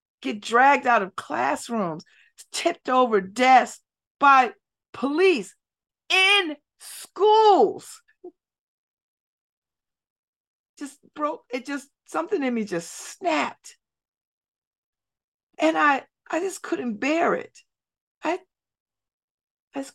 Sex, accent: female, American